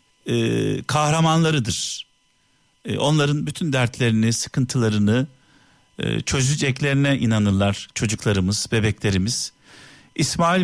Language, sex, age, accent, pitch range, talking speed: Turkish, male, 50-69, native, 115-150 Hz, 55 wpm